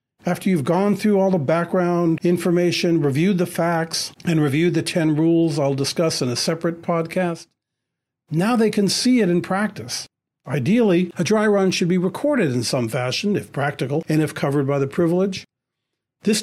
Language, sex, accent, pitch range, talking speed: English, male, American, 150-195 Hz, 175 wpm